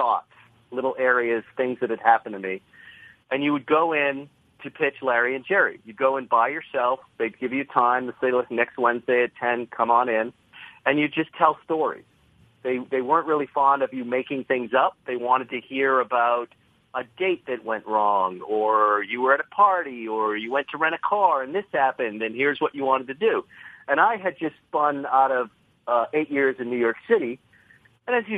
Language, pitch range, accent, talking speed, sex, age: English, 125-175 Hz, American, 220 wpm, male, 40-59